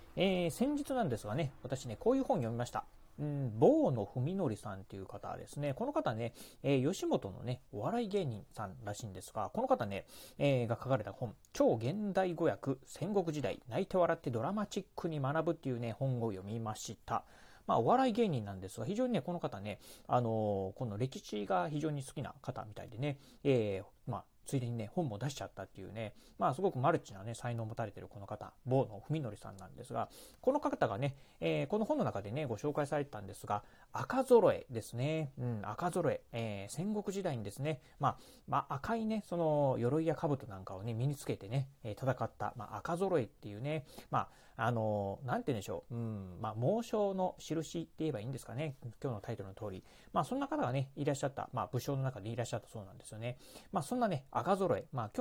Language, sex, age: Japanese, male, 30-49